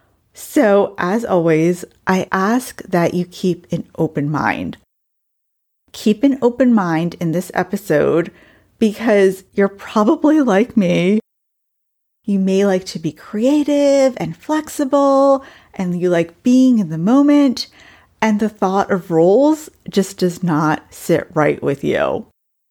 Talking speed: 130 wpm